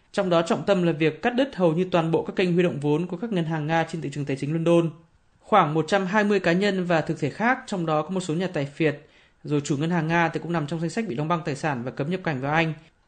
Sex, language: male, Vietnamese